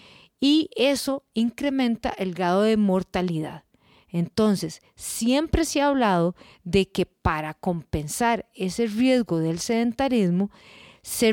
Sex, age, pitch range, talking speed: female, 40-59, 180-255 Hz, 110 wpm